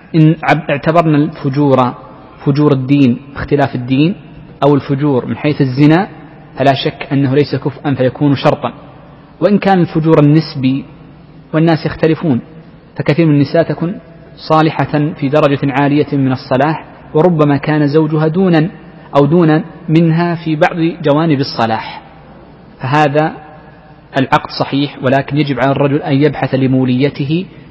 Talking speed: 125 wpm